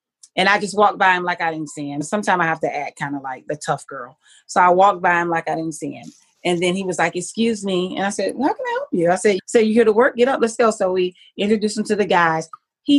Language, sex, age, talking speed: English, female, 30-49, 305 wpm